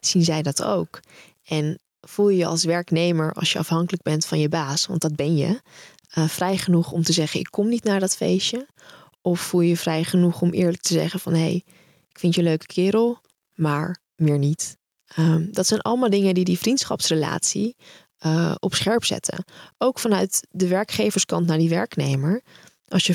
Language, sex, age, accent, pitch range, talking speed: Dutch, female, 20-39, Dutch, 165-195 Hz, 195 wpm